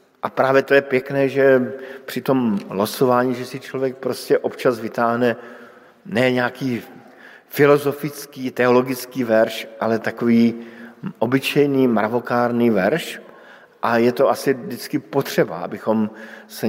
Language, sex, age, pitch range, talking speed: Slovak, male, 50-69, 115-140 Hz, 120 wpm